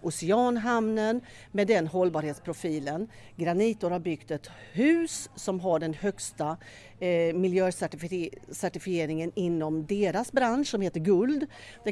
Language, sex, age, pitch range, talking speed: English, female, 40-59, 160-205 Hz, 105 wpm